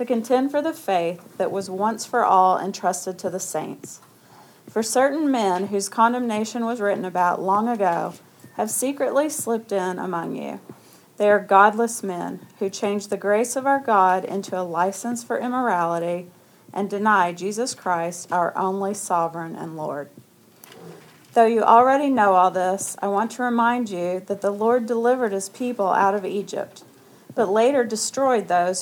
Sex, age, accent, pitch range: female, 40-59, American, 185-235 Hz